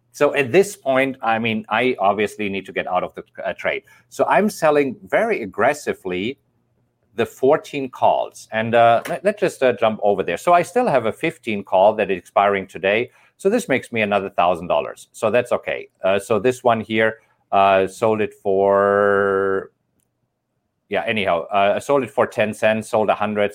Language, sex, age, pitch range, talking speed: English, male, 50-69, 105-135 Hz, 190 wpm